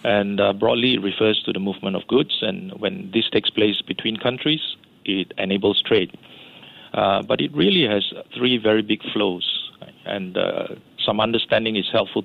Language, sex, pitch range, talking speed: English, male, 100-120 Hz, 170 wpm